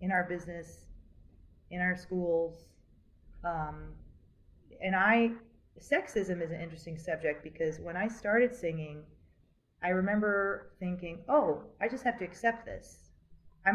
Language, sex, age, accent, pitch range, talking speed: English, female, 30-49, American, 150-195 Hz, 130 wpm